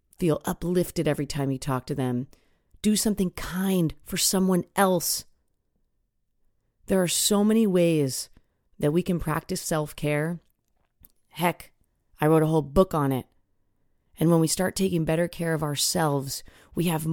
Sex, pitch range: female, 150-185 Hz